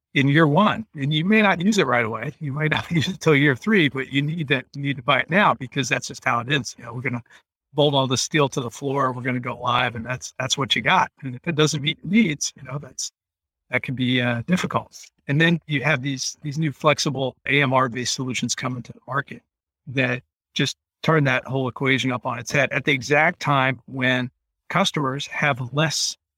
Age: 50-69